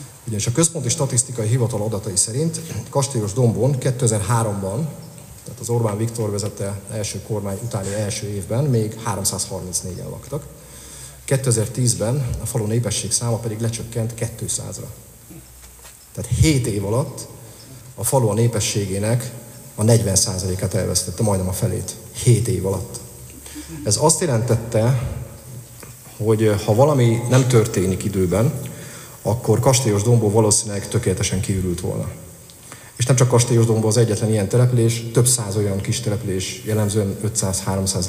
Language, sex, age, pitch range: Hungarian, male, 40-59, 100-120 Hz